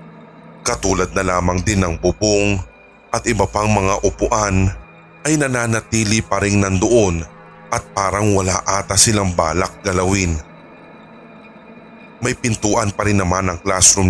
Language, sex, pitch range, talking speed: English, male, 95-150 Hz, 130 wpm